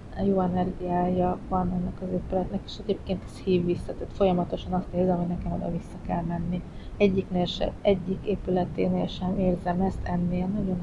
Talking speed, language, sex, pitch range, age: 170 wpm, Hungarian, female, 175-190 Hz, 30-49